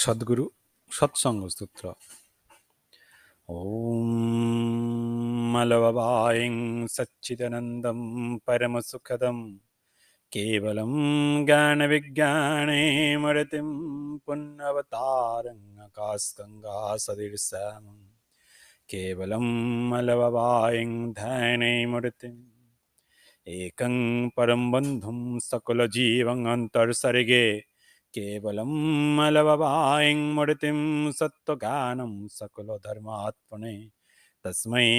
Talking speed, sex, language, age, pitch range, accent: 40 wpm, male, Bengali, 30-49, 110-130 Hz, native